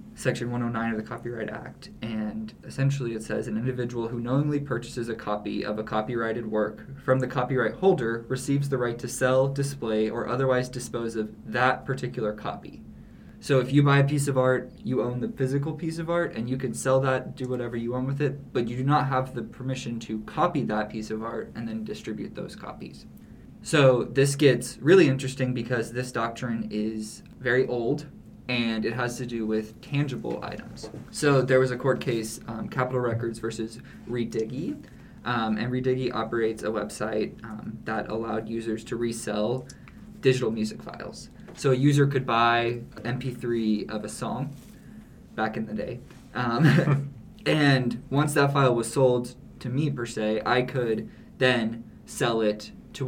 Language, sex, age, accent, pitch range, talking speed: English, male, 20-39, American, 115-130 Hz, 175 wpm